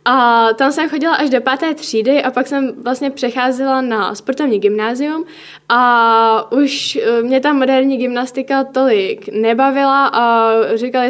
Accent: native